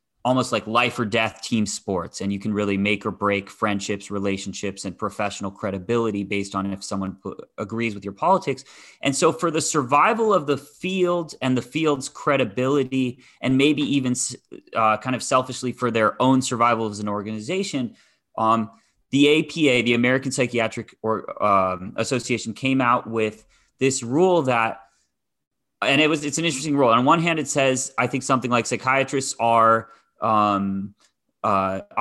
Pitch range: 110-135 Hz